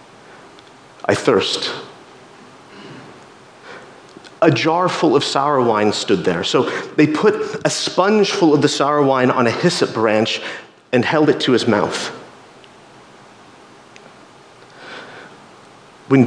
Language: English